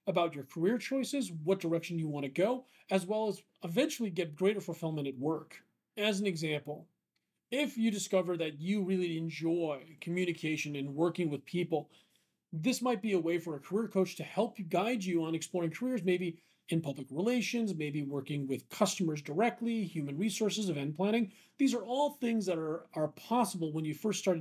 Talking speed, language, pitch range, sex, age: 180 wpm, English, 155-210 Hz, male, 40-59